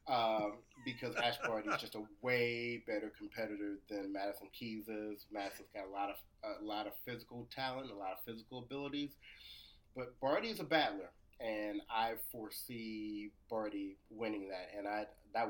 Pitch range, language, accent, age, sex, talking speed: 105-130 Hz, English, American, 30-49, male, 165 wpm